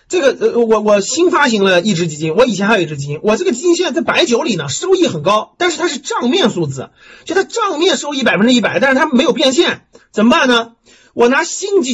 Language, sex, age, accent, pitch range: Chinese, male, 30-49, native, 200-280 Hz